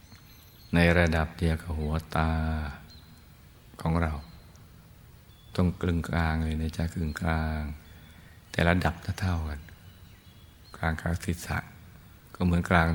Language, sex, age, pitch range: Thai, male, 60-79, 80-95 Hz